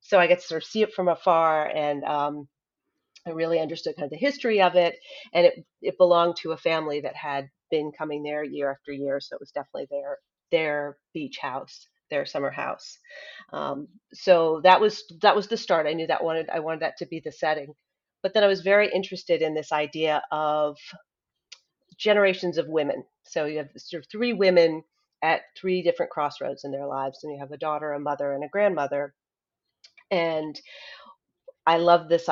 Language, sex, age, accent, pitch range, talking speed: English, female, 40-59, American, 150-185 Hz, 200 wpm